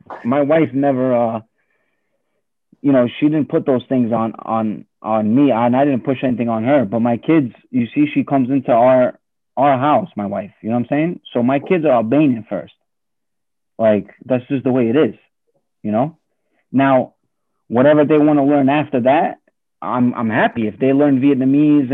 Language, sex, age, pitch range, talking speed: English, male, 30-49, 125-160 Hz, 195 wpm